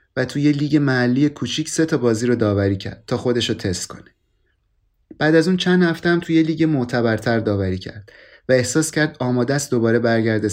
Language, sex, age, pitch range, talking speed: Persian, male, 30-49, 110-145 Hz, 200 wpm